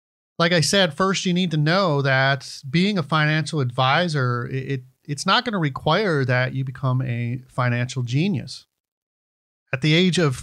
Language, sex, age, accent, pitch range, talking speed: English, male, 40-59, American, 125-160 Hz, 155 wpm